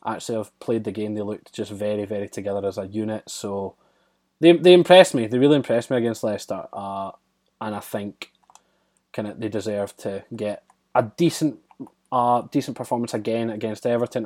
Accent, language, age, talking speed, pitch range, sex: British, English, 20-39, 180 wpm, 105-125 Hz, male